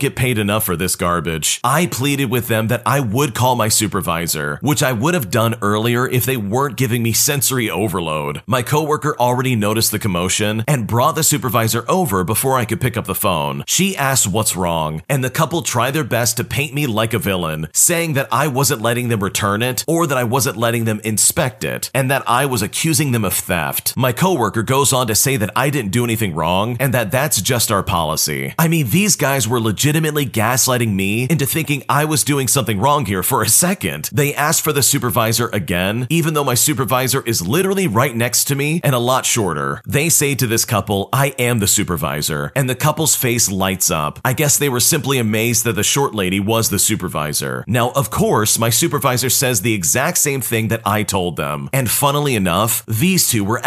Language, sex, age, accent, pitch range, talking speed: English, male, 40-59, American, 105-140 Hz, 215 wpm